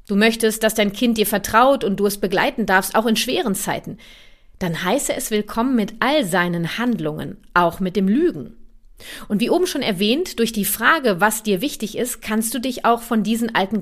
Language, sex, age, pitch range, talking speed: German, female, 30-49, 195-255 Hz, 205 wpm